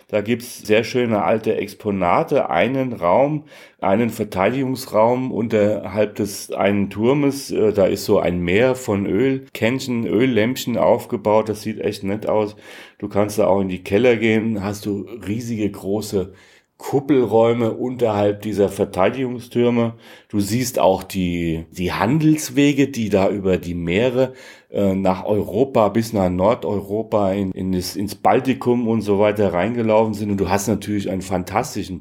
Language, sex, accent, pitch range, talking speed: German, male, German, 95-120 Hz, 145 wpm